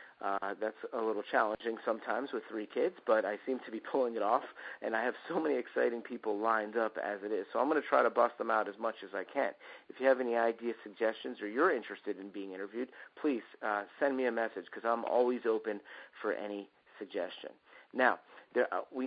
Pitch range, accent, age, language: 110-140 Hz, American, 40-59, English